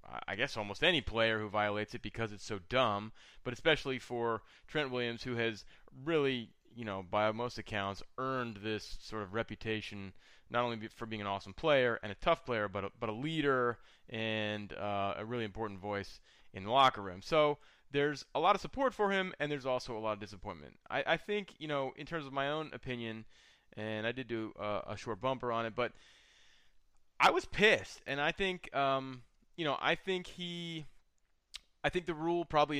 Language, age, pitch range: English, 20-39, 105-135 Hz